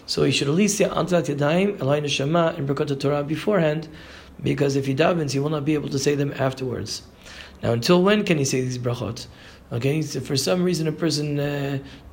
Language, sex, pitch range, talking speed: English, male, 130-165 Hz, 215 wpm